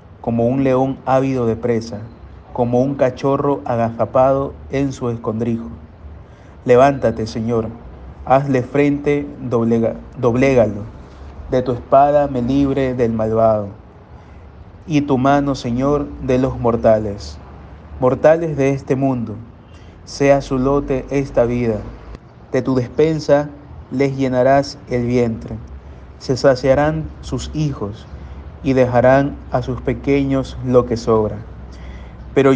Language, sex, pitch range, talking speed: Spanish, male, 105-135 Hz, 110 wpm